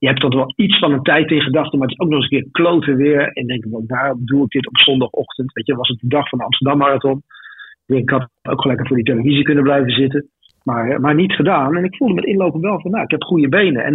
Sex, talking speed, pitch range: male, 285 wpm, 130-155 Hz